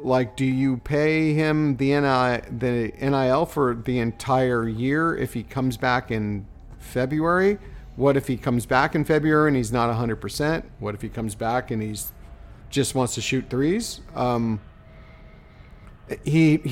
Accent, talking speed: American, 160 wpm